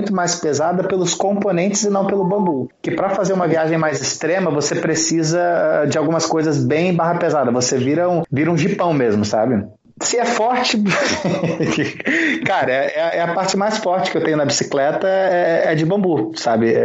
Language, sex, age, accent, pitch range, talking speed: Portuguese, male, 30-49, Brazilian, 150-195 Hz, 185 wpm